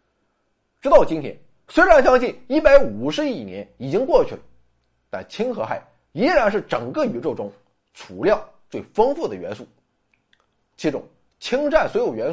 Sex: male